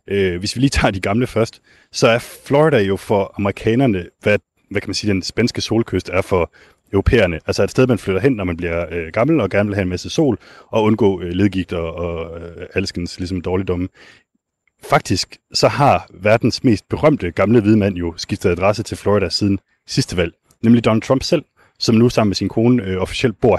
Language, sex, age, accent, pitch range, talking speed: Danish, male, 30-49, native, 90-115 Hz, 205 wpm